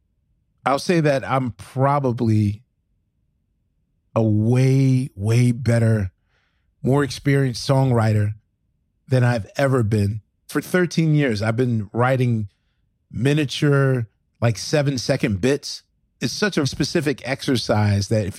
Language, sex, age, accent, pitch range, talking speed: English, male, 30-49, American, 110-135 Hz, 110 wpm